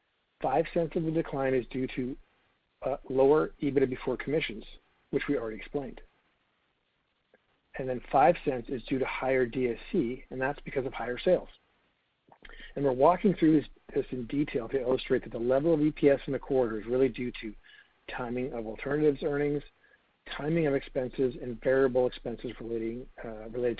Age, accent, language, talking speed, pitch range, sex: 50-69, American, English, 160 wpm, 125-145 Hz, male